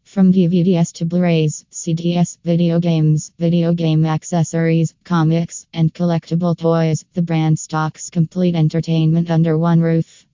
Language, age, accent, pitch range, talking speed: English, 20-39, American, 160-175 Hz, 130 wpm